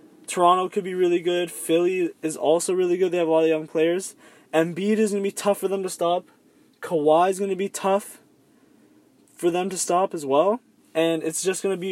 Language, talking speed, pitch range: English, 225 wpm, 150-190 Hz